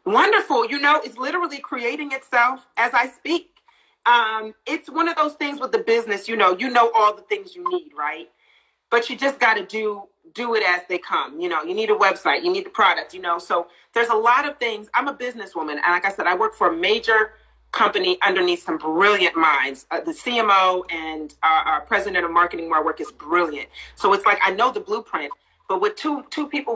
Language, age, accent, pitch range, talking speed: English, 30-49, American, 185-300 Hz, 225 wpm